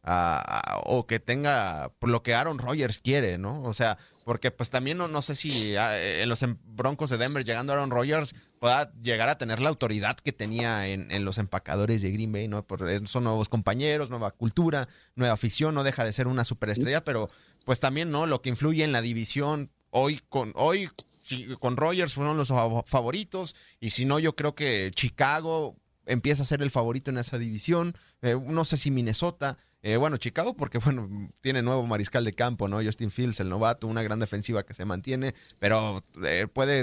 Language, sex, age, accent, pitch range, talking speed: Spanish, male, 30-49, Mexican, 110-140 Hz, 195 wpm